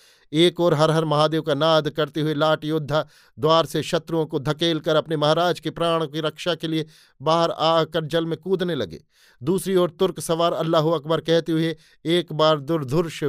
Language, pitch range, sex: Hindi, 145-165 Hz, male